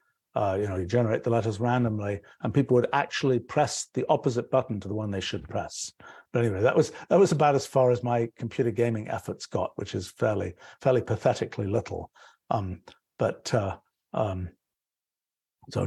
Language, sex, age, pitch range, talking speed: English, male, 60-79, 105-130 Hz, 180 wpm